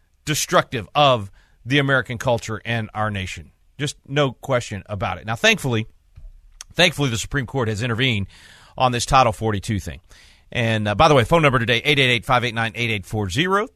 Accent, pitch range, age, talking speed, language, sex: American, 110-145 Hz, 40-59, 155 wpm, English, male